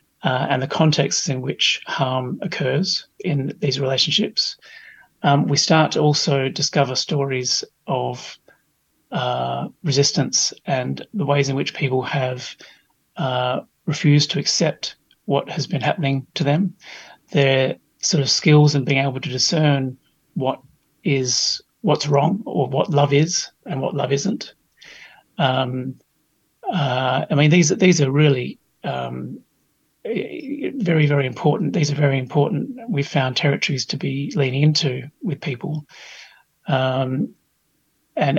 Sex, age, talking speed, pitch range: male, 30-49, 135 wpm, 135-155 Hz